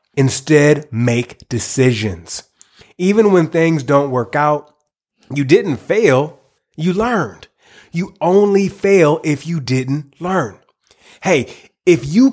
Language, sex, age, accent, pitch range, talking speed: English, male, 30-49, American, 125-165 Hz, 115 wpm